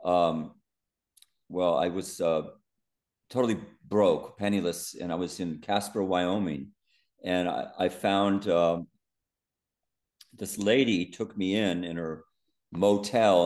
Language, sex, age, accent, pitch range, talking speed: English, male, 50-69, American, 85-95 Hz, 120 wpm